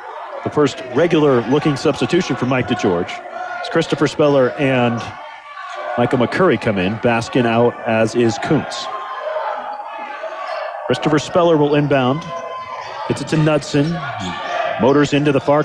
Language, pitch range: English, 135-195 Hz